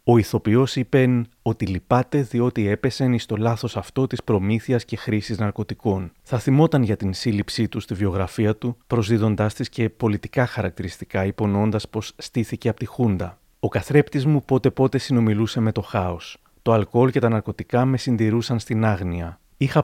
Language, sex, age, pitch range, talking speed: Greek, male, 30-49, 105-125 Hz, 165 wpm